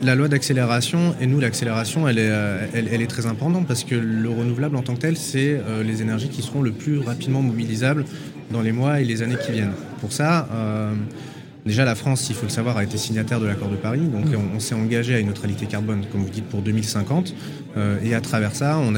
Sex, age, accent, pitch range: male, 30-49, French, 110-135 Hz